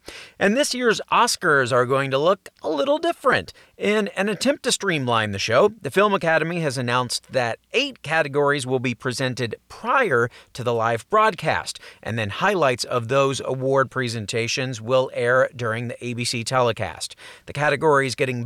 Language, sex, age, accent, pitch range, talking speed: English, male, 40-59, American, 120-170 Hz, 165 wpm